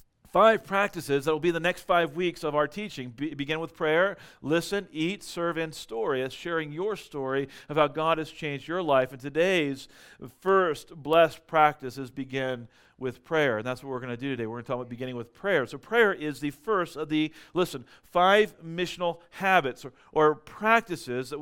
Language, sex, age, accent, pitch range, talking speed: English, male, 40-59, American, 145-190 Hz, 200 wpm